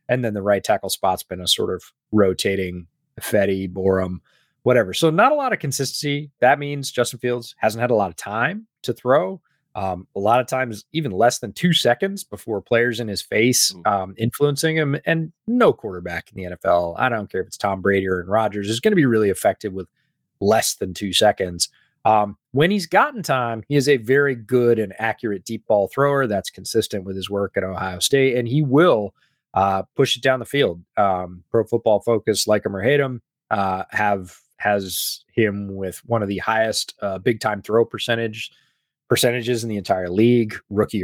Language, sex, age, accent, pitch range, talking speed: English, male, 30-49, American, 95-130 Hz, 200 wpm